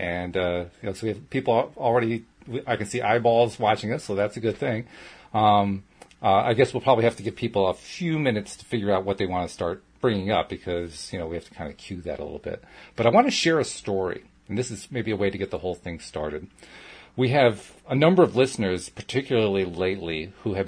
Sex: male